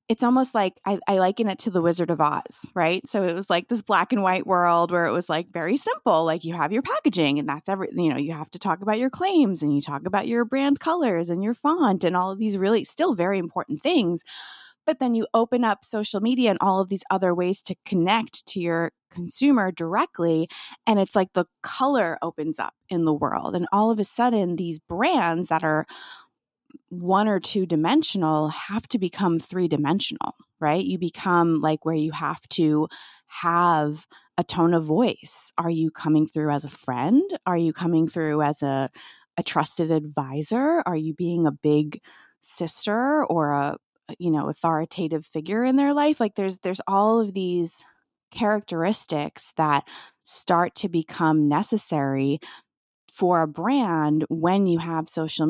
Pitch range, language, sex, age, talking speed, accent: 160-220 Hz, English, female, 20-39, 190 wpm, American